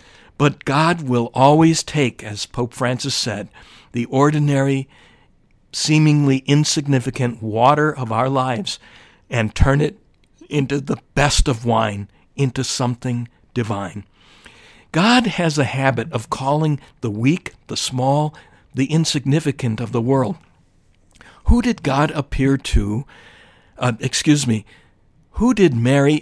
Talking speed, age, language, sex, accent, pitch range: 125 wpm, 60-79, English, male, American, 120-145 Hz